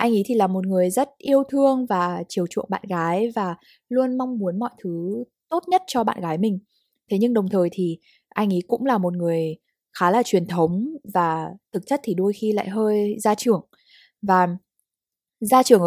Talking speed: 205 wpm